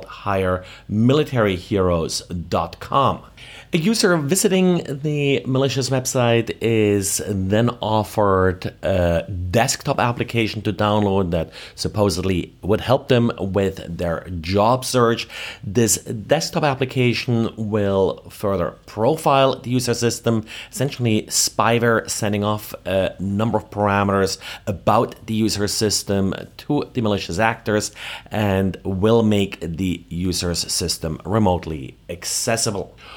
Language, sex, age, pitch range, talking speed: English, male, 40-59, 100-125 Hz, 105 wpm